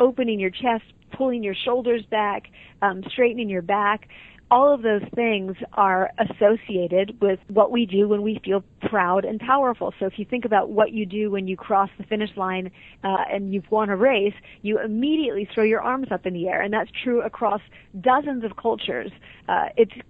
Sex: female